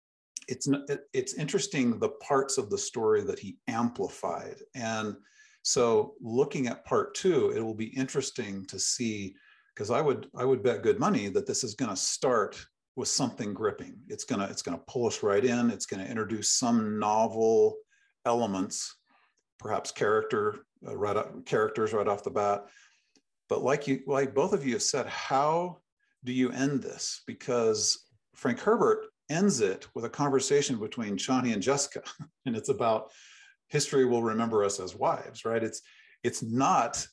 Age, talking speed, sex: 50-69, 165 wpm, male